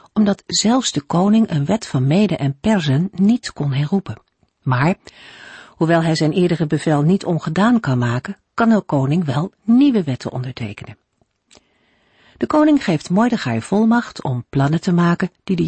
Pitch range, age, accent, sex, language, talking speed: 145-205 Hz, 50-69, Dutch, female, Dutch, 155 wpm